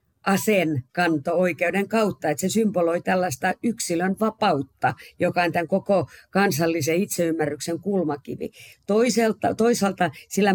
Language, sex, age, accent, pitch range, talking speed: Finnish, female, 50-69, native, 155-185 Hz, 100 wpm